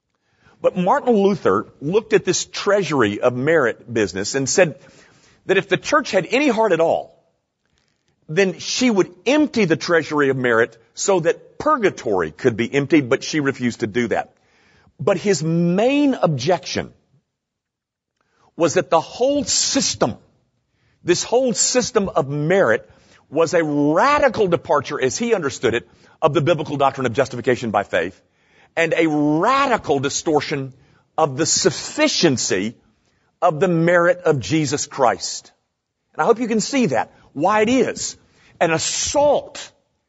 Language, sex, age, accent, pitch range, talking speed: English, male, 50-69, American, 150-220 Hz, 145 wpm